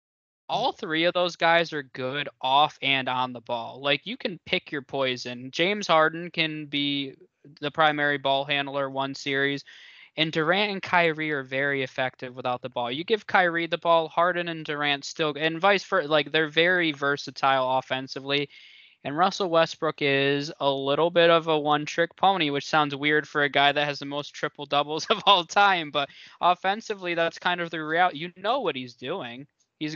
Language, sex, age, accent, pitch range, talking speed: English, male, 20-39, American, 135-165 Hz, 185 wpm